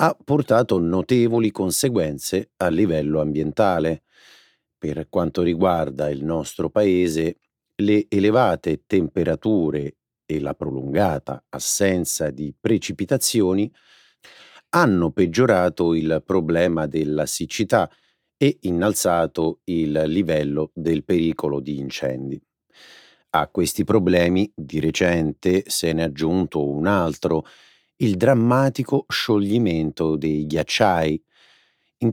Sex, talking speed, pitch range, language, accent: male, 100 wpm, 80-105 Hz, Italian, native